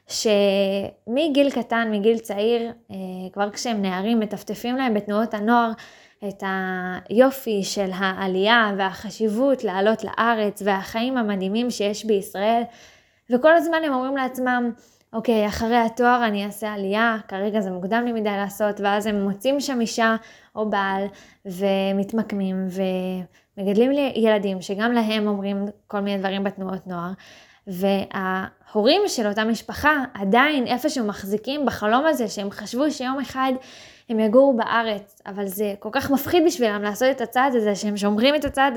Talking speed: 135 wpm